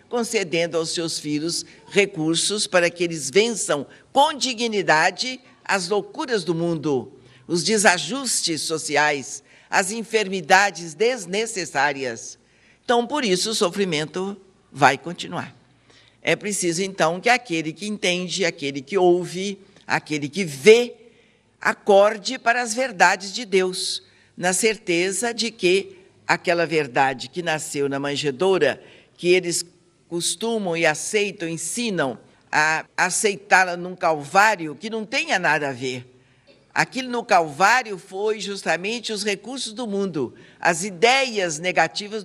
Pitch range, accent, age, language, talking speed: 160-220 Hz, Brazilian, 60-79, Portuguese, 120 wpm